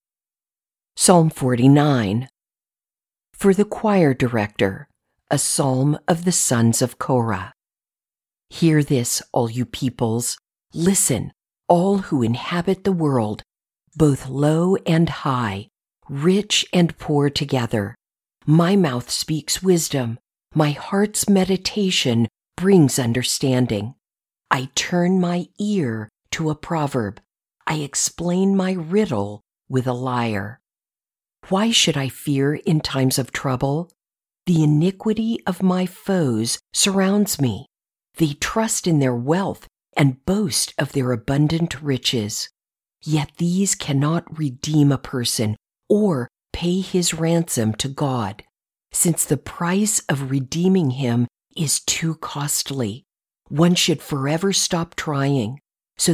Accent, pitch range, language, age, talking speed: American, 125-175 Hz, English, 50-69, 115 wpm